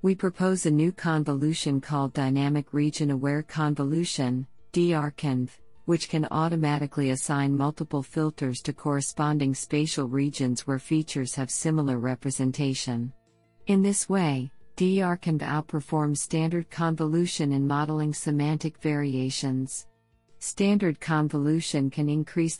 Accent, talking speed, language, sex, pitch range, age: American, 105 wpm, English, female, 135-155 Hz, 50-69